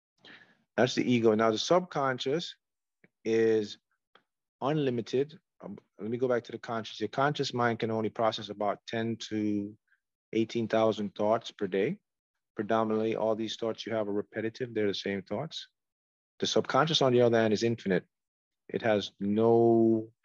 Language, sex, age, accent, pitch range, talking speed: English, male, 30-49, American, 110-125 Hz, 160 wpm